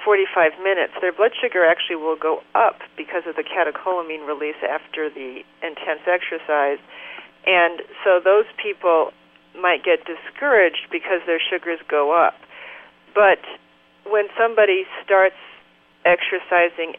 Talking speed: 125 wpm